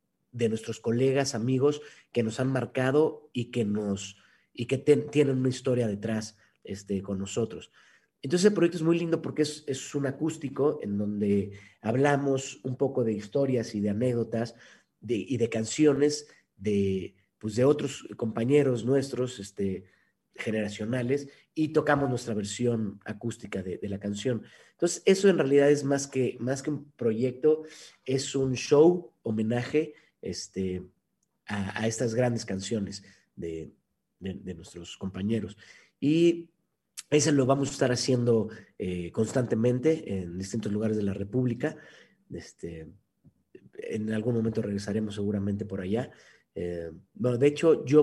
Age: 40-59